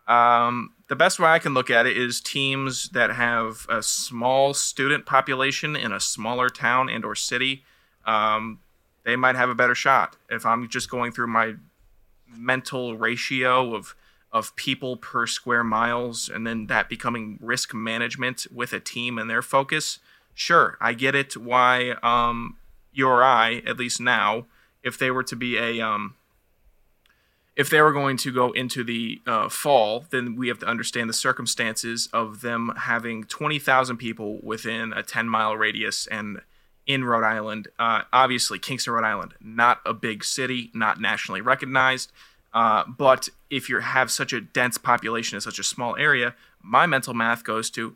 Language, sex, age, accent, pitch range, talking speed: English, male, 20-39, American, 115-130 Hz, 175 wpm